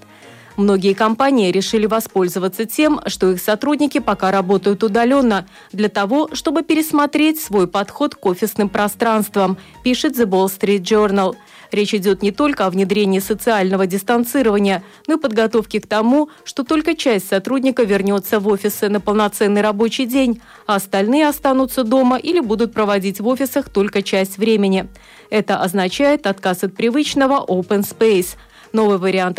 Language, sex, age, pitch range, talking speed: Russian, female, 30-49, 200-260 Hz, 145 wpm